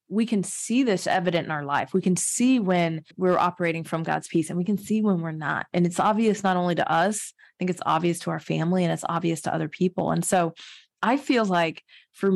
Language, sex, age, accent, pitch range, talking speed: English, female, 20-39, American, 170-200 Hz, 245 wpm